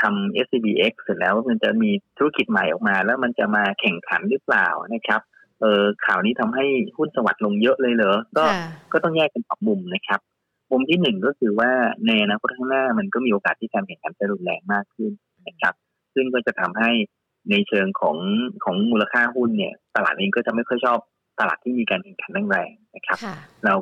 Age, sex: 30-49, male